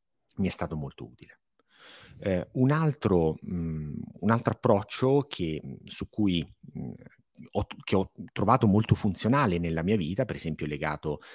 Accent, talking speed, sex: native, 150 wpm, male